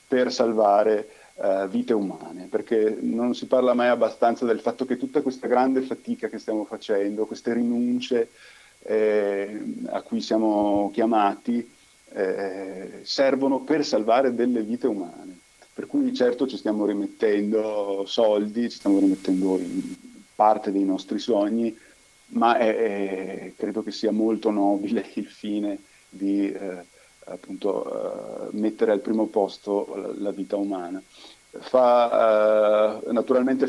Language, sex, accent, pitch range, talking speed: Italian, male, native, 105-130 Hz, 135 wpm